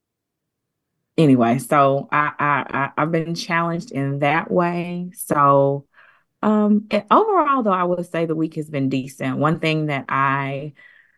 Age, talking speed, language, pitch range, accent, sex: 20-39, 145 wpm, English, 130-160 Hz, American, female